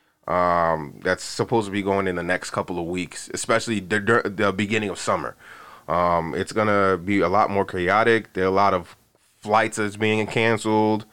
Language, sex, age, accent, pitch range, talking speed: English, male, 20-39, American, 90-115 Hz, 190 wpm